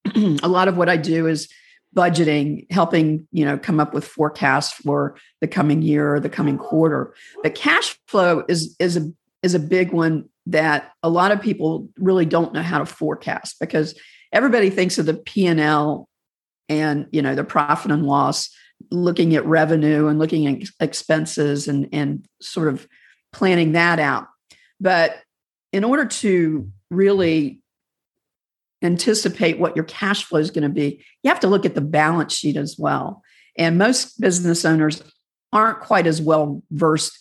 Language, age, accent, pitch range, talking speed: English, 50-69, American, 150-180 Hz, 170 wpm